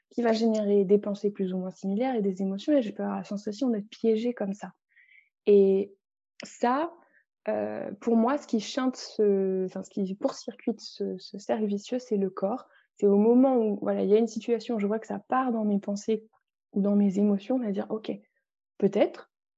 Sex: female